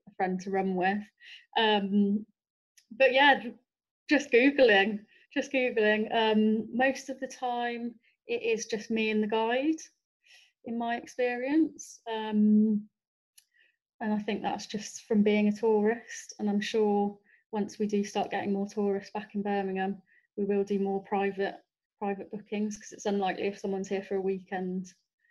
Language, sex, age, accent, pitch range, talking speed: English, female, 30-49, British, 200-235 Hz, 155 wpm